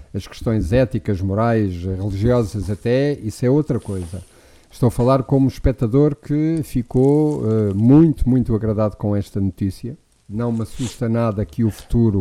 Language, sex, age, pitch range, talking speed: Portuguese, male, 50-69, 100-135 Hz, 155 wpm